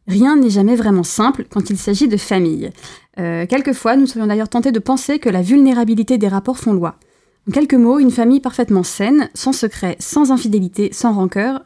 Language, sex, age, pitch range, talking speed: French, female, 20-39, 195-255 Hz, 195 wpm